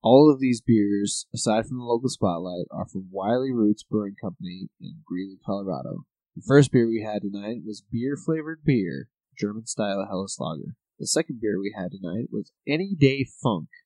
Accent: American